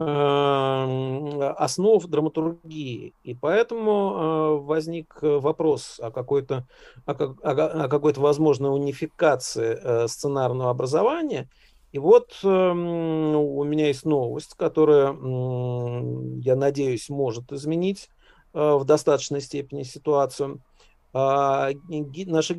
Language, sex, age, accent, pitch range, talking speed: Russian, male, 50-69, native, 135-165 Hz, 75 wpm